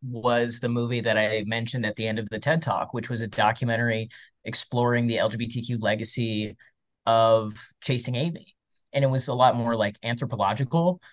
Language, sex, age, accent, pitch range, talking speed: English, male, 20-39, American, 110-130 Hz, 175 wpm